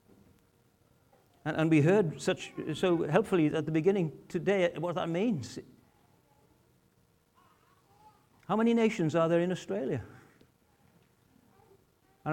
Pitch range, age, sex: 135-205 Hz, 60-79, male